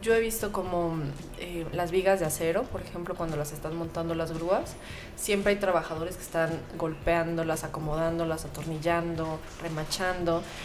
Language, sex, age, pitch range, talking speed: Spanish, female, 20-39, 165-190 Hz, 145 wpm